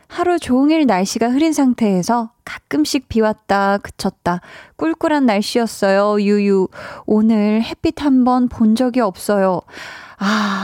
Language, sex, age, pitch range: Korean, female, 20-39, 195-265 Hz